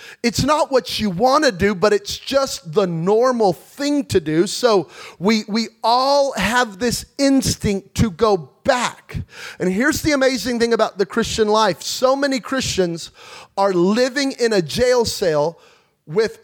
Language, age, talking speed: English, 30-49, 160 wpm